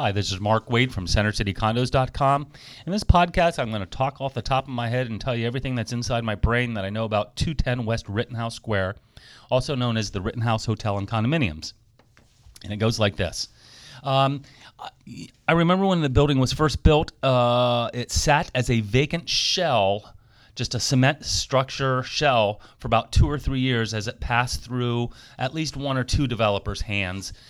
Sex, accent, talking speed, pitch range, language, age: male, American, 190 wpm, 110-130 Hz, English, 30-49